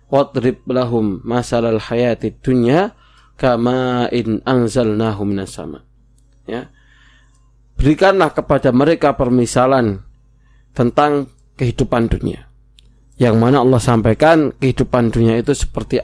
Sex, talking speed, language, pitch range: male, 85 wpm, Indonesian, 110-130 Hz